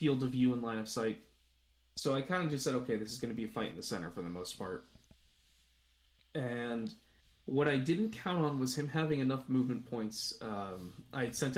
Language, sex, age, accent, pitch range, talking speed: English, male, 20-39, American, 110-140 Hz, 225 wpm